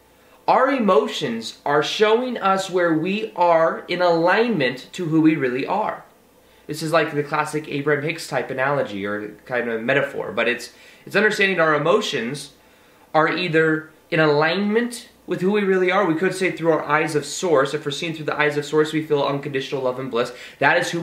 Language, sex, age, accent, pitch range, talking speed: English, male, 20-39, American, 145-180 Hz, 195 wpm